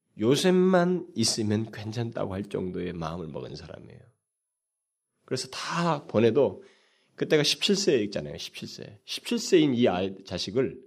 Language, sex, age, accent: Korean, male, 30-49, native